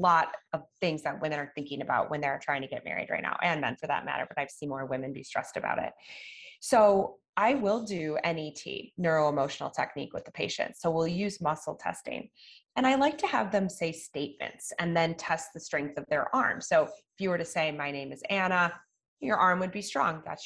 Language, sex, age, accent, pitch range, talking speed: English, female, 20-39, American, 155-200 Hz, 225 wpm